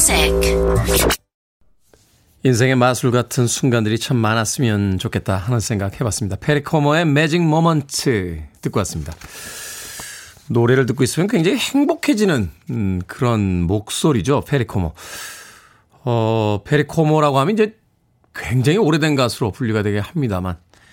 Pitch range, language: 105-165 Hz, Korean